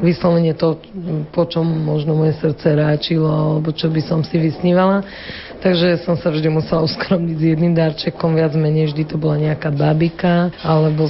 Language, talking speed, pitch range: Slovak, 170 wpm, 155-175 Hz